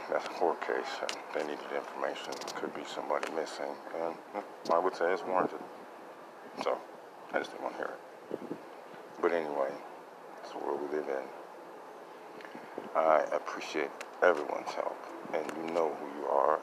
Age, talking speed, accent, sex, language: 50-69, 160 wpm, American, male, English